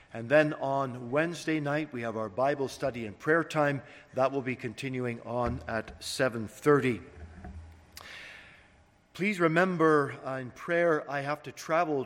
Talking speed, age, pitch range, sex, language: 145 wpm, 50-69, 125-150 Hz, male, English